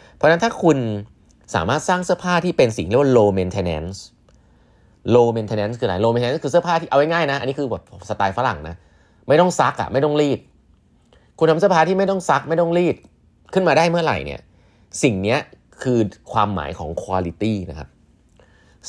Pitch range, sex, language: 95-140 Hz, male, Thai